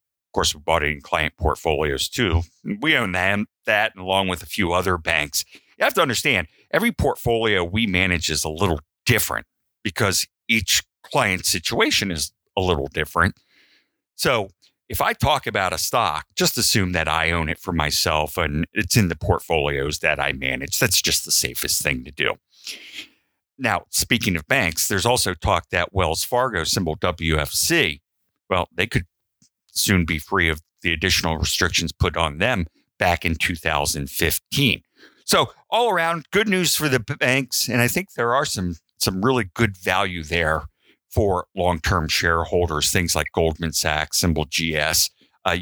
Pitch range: 80-100 Hz